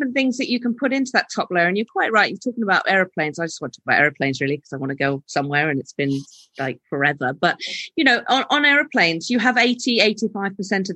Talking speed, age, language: 250 wpm, 40-59, English